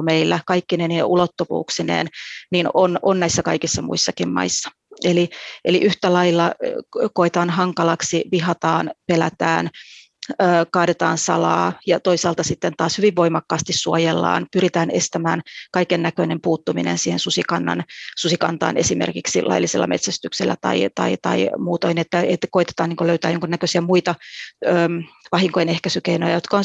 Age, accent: 30-49, native